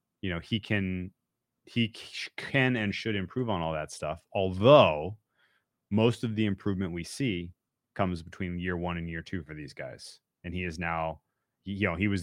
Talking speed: 190 wpm